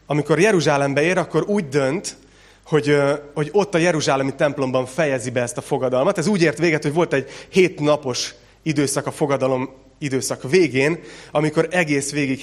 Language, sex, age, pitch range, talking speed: Hungarian, male, 30-49, 130-155 Hz, 160 wpm